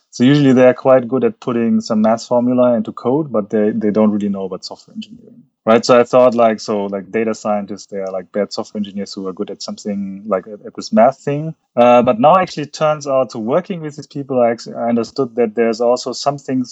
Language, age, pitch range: English, 30-49, 105-130 Hz